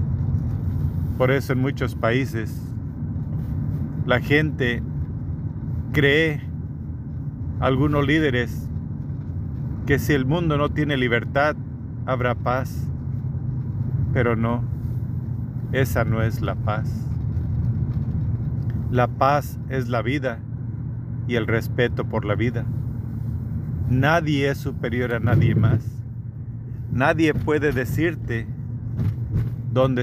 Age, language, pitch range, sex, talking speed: 50-69, Spanish, 115-130 Hz, male, 95 wpm